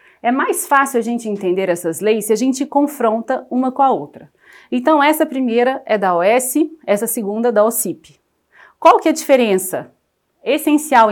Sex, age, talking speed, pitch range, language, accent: female, 30-49, 180 wpm, 210-280 Hz, Portuguese, Brazilian